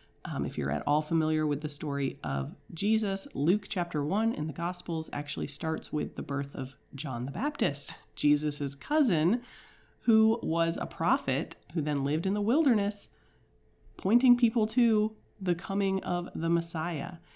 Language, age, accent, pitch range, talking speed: English, 30-49, American, 150-200 Hz, 160 wpm